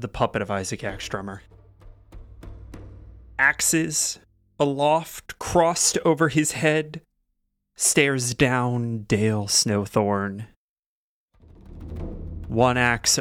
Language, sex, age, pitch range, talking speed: English, male, 30-49, 90-125 Hz, 75 wpm